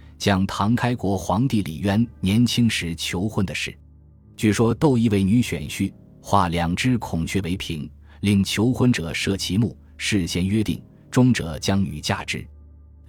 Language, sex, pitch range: Chinese, male, 85-115 Hz